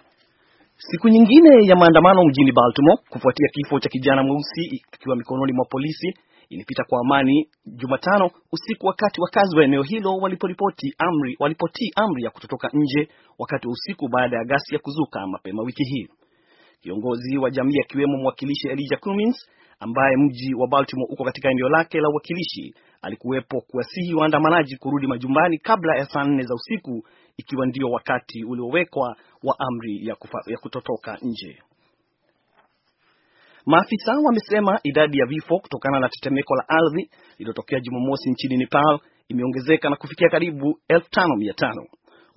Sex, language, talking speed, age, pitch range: male, Swahili, 140 wpm, 40-59, 130-170 Hz